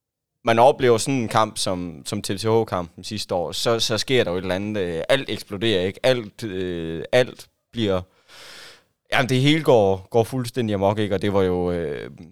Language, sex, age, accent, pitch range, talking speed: Danish, male, 20-39, native, 95-115 Hz, 190 wpm